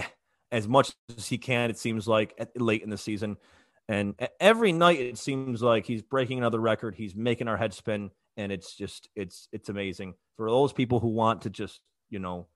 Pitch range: 95-130 Hz